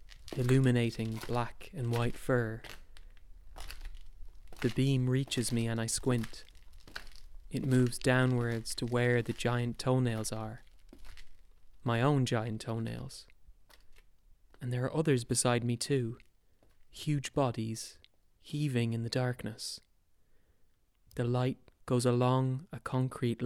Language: English